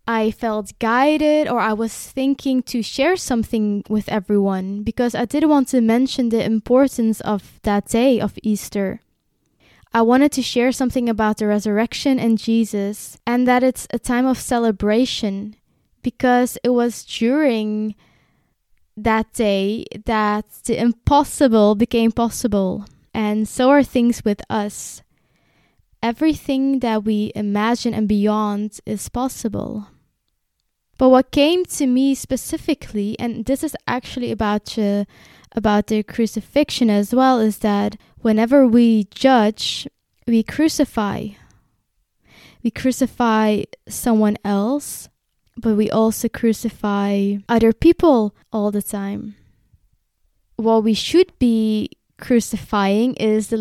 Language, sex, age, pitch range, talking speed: English, female, 20-39, 210-250 Hz, 125 wpm